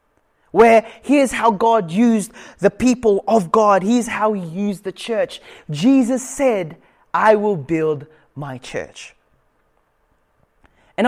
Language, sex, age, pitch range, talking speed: English, male, 20-39, 180-240 Hz, 125 wpm